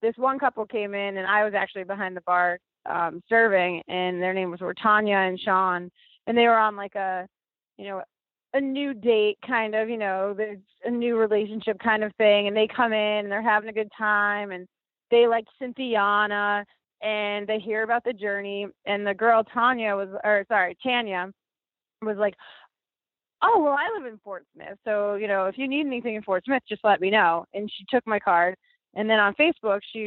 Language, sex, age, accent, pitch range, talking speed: English, female, 20-39, American, 195-245 Hz, 205 wpm